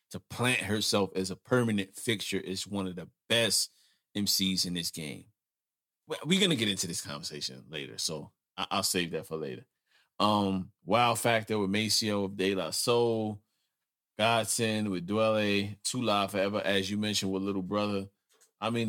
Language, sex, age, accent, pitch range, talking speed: English, male, 30-49, American, 95-105 Hz, 170 wpm